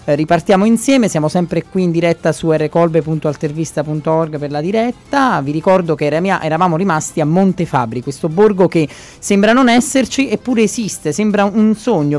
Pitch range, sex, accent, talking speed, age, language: 150-205 Hz, male, native, 150 wpm, 30-49, Italian